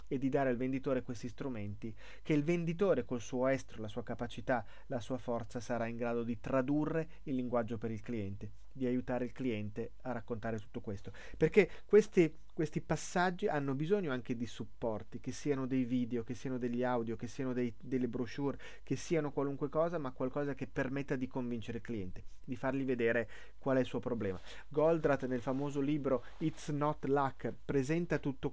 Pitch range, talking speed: 120-150 Hz, 185 wpm